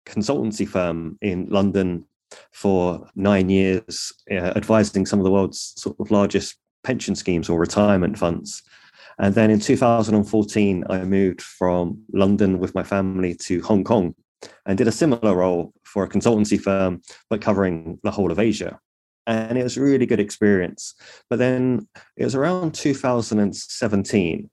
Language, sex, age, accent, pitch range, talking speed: English, male, 30-49, British, 95-110 Hz, 155 wpm